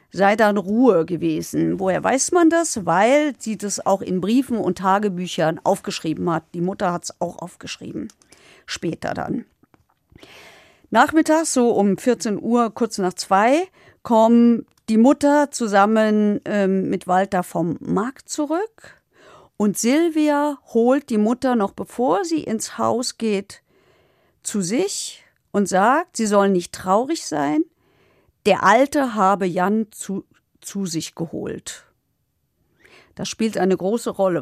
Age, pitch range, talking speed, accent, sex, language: 50-69, 190-255 Hz, 135 wpm, German, female, German